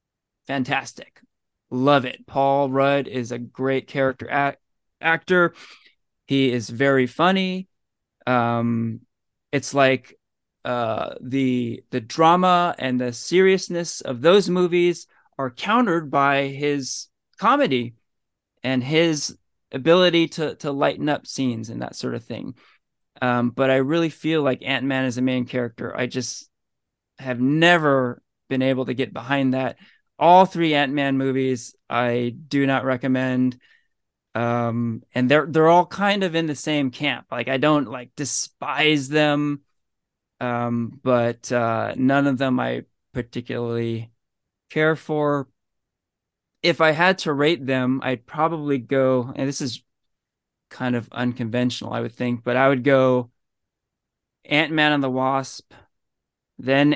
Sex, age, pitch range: male, 20-39, 125-150 Hz